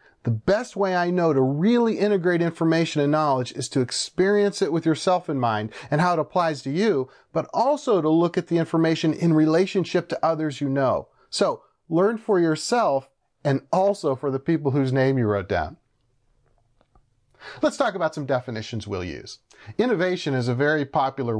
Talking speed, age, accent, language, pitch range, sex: 180 wpm, 40-59, American, English, 125-170 Hz, male